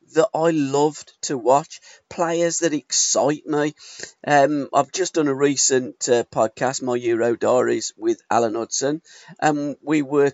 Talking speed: 150 wpm